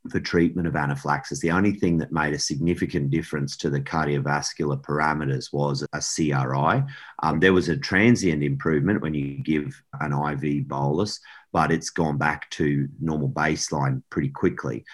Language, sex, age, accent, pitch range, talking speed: English, male, 40-59, Australian, 70-80 Hz, 160 wpm